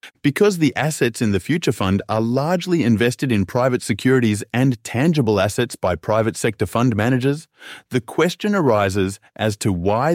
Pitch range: 105-140 Hz